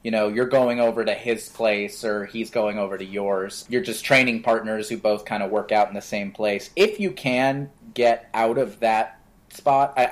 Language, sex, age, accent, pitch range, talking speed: English, male, 30-49, American, 105-130 Hz, 220 wpm